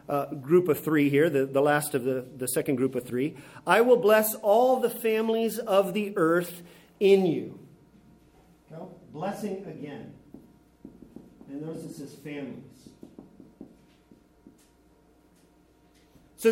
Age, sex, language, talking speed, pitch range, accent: 40-59, male, English, 125 wpm, 160-215 Hz, American